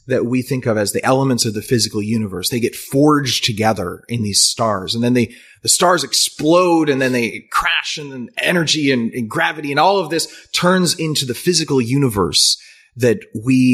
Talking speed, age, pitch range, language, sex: 190 wpm, 30-49, 110-150 Hz, English, male